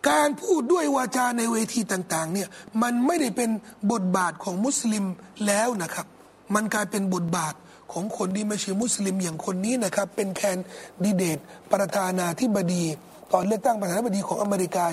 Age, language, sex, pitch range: 30-49, Thai, male, 210-340 Hz